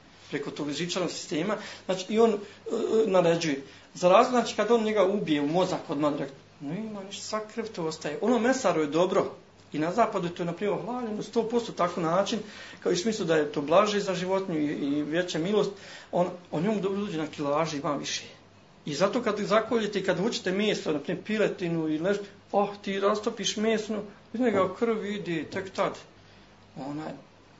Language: Croatian